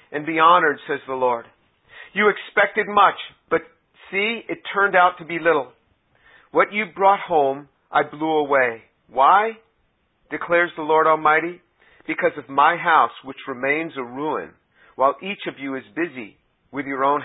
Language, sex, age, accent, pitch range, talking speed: English, male, 50-69, American, 145-180 Hz, 160 wpm